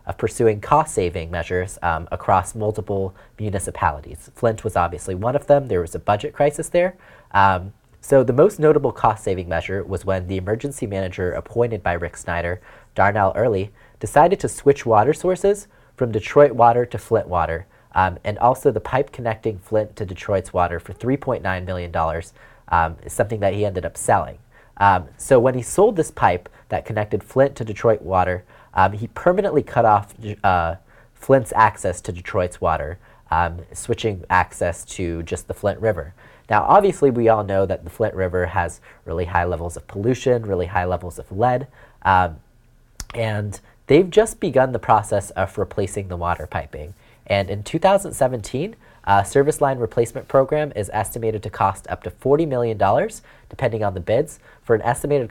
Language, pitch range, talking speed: English, 90-125 Hz, 170 wpm